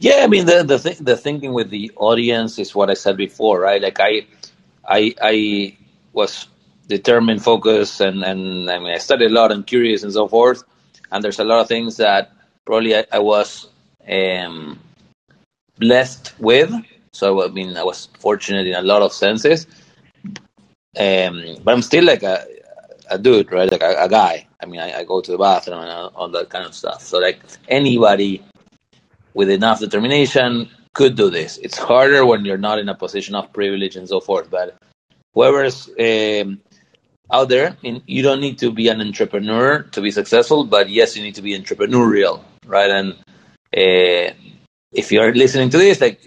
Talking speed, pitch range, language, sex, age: 185 wpm, 100-125 Hz, English, male, 30-49